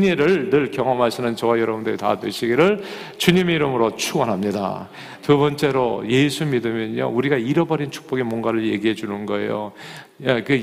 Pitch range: 110-140 Hz